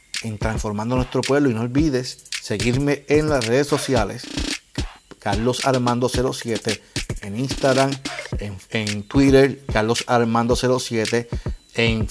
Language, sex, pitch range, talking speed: Spanish, male, 115-140 Hz, 120 wpm